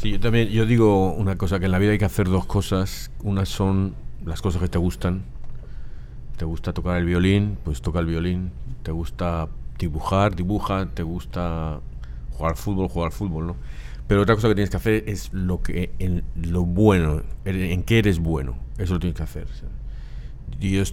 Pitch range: 75-95 Hz